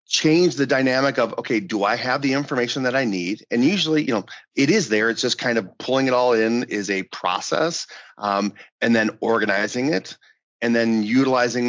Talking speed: 200 wpm